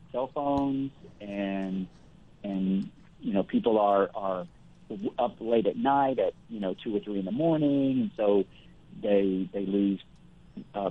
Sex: male